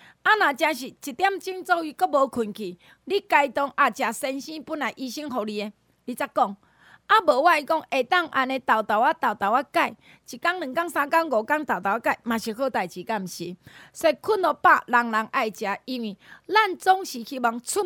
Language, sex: Chinese, female